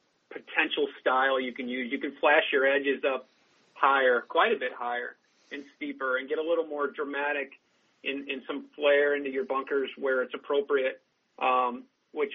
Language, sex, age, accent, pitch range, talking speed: English, male, 40-59, American, 135-160 Hz, 175 wpm